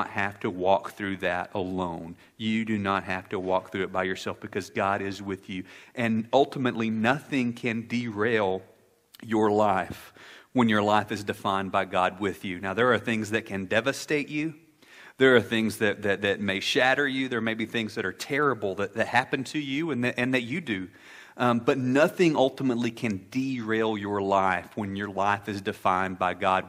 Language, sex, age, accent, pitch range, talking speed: English, male, 40-59, American, 100-125 Hz, 195 wpm